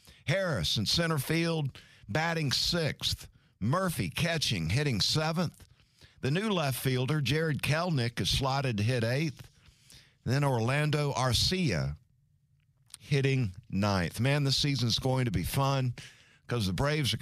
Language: English